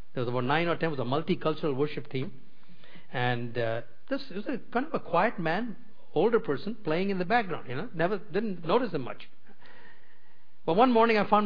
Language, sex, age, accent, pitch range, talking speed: English, male, 50-69, Indian, 130-195 Hz, 205 wpm